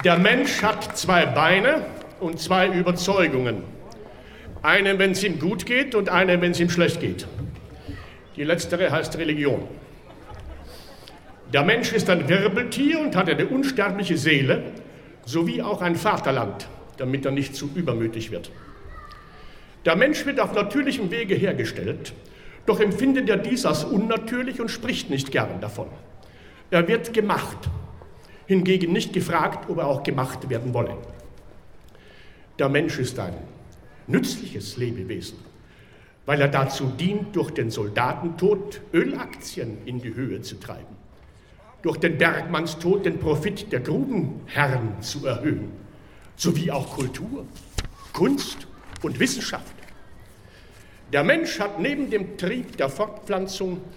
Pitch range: 130-200 Hz